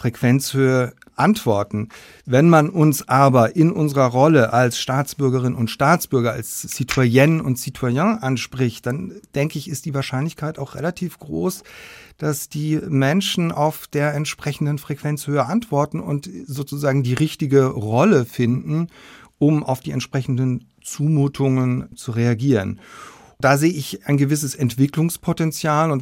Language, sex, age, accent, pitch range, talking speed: German, male, 40-59, German, 130-155 Hz, 125 wpm